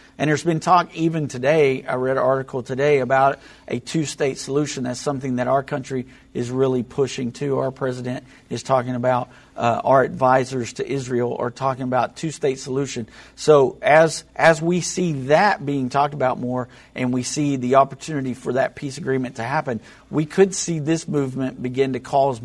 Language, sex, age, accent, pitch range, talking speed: English, male, 50-69, American, 125-140 Hz, 180 wpm